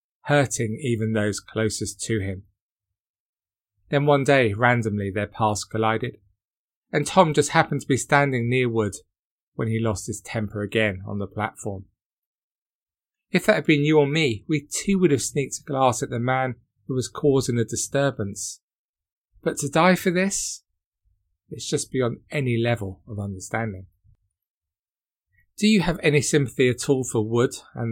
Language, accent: English, British